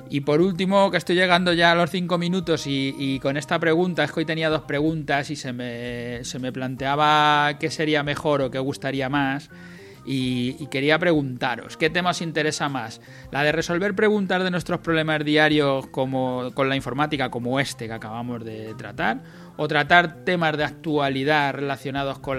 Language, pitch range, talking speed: Spanish, 130-160 Hz, 185 wpm